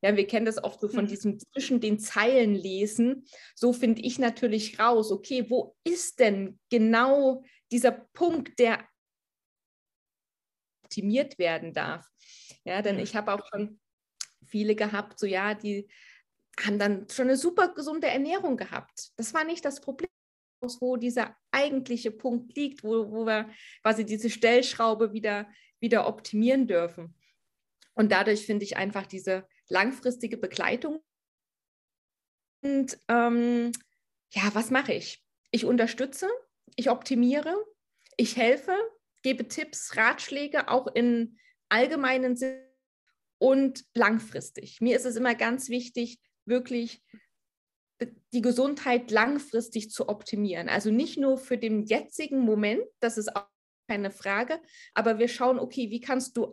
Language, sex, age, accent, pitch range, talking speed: German, female, 20-39, German, 215-260 Hz, 135 wpm